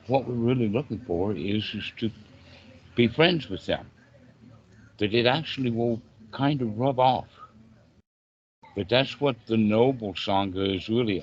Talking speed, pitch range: 150 wpm, 95-120 Hz